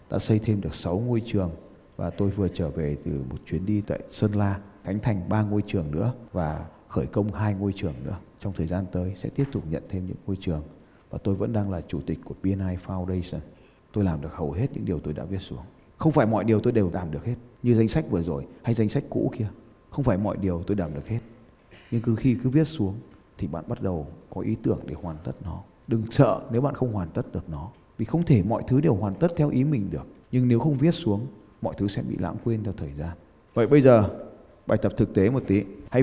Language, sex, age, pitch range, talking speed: Vietnamese, male, 20-39, 95-135 Hz, 255 wpm